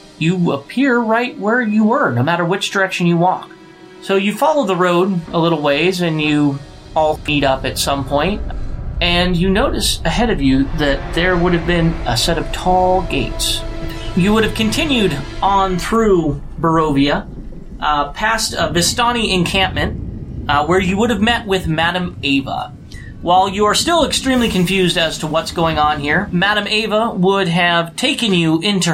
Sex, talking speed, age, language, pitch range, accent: male, 175 wpm, 30-49, English, 145-195 Hz, American